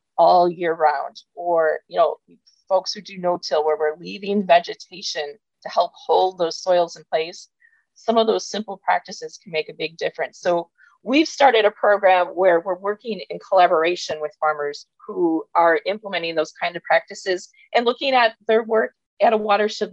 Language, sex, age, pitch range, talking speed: English, female, 30-49, 170-215 Hz, 175 wpm